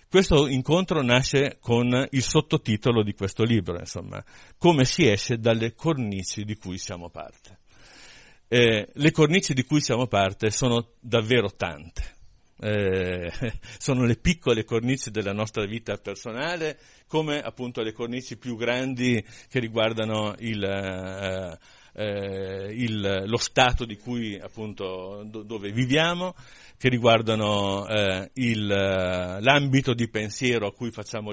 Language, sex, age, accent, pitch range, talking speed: Italian, male, 50-69, native, 100-125 Hz, 130 wpm